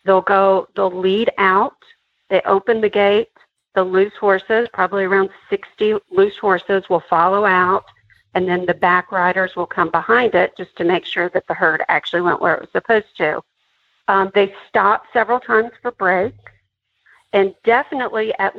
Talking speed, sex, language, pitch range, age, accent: 170 wpm, female, English, 175-220 Hz, 50-69, American